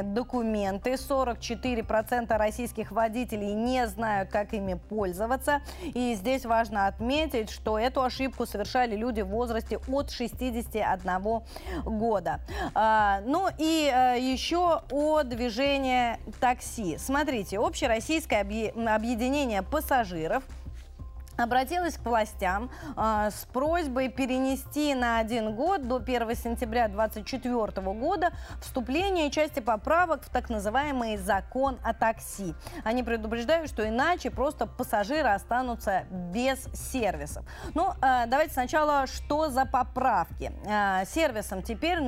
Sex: female